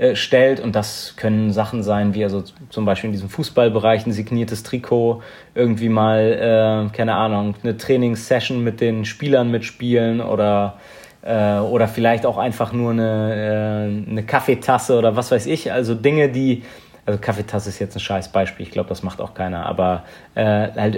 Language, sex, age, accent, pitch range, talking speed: German, male, 30-49, German, 110-125 Hz, 170 wpm